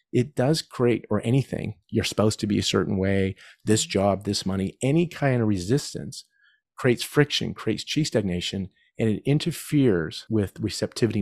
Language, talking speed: English, 160 wpm